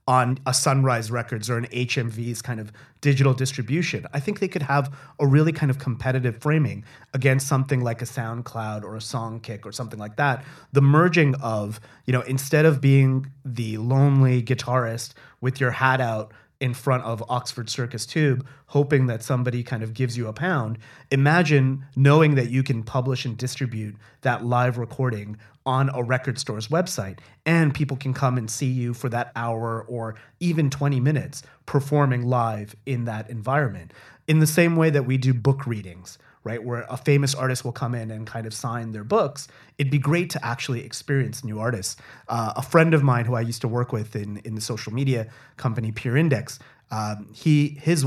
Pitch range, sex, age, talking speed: 120-140 Hz, male, 30-49, 190 wpm